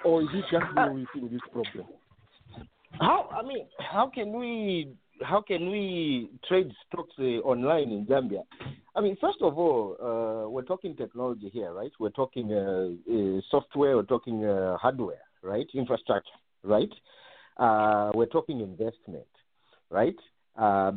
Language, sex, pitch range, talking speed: English, male, 105-150 Hz, 145 wpm